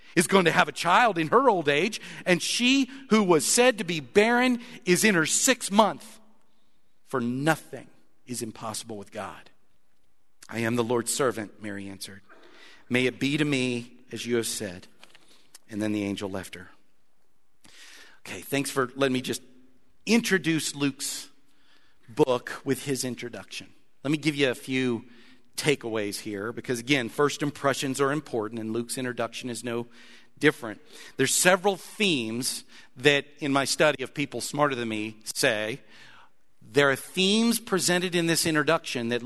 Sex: male